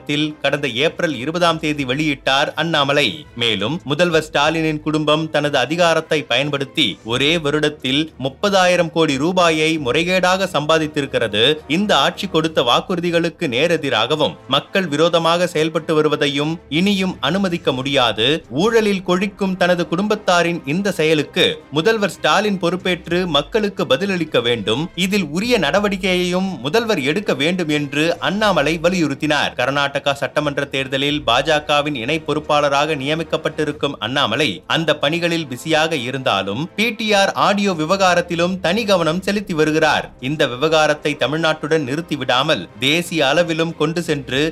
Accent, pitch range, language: native, 145-175 Hz, Tamil